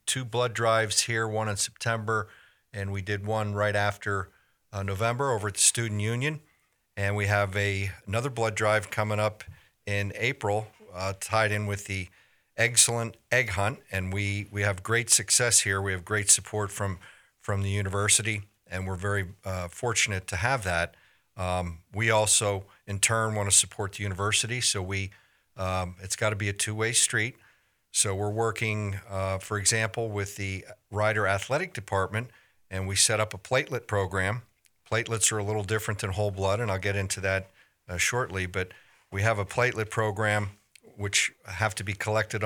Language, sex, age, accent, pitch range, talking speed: English, male, 50-69, American, 100-110 Hz, 180 wpm